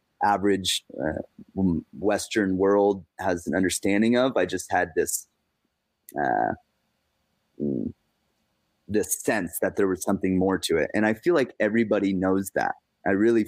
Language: English